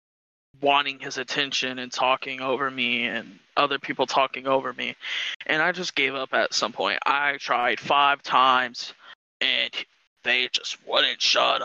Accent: American